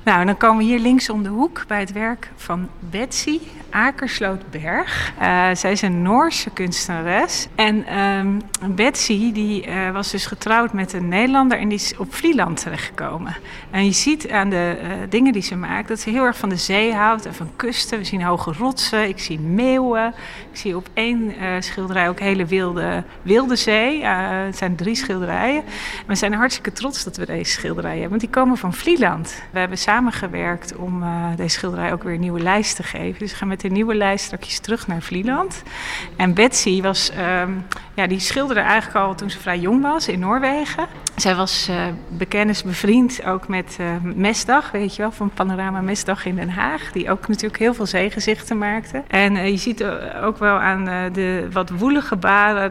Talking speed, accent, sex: 195 wpm, Dutch, female